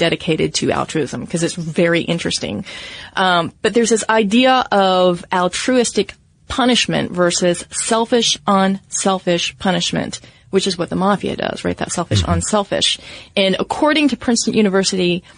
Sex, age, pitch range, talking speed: female, 30-49, 170-220 Hz, 135 wpm